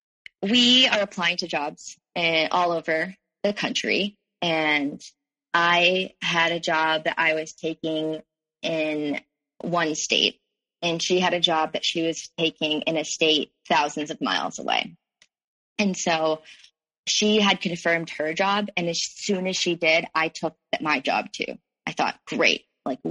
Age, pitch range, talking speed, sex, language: 20-39, 160-190 Hz, 155 wpm, female, English